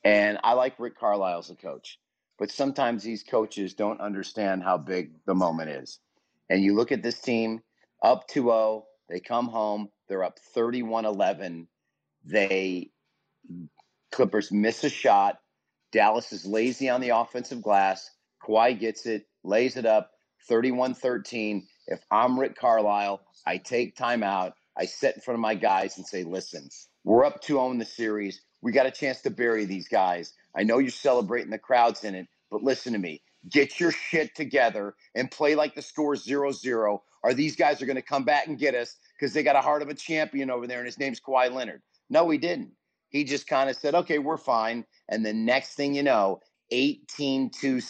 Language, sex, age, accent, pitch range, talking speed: English, male, 40-59, American, 105-135 Hz, 190 wpm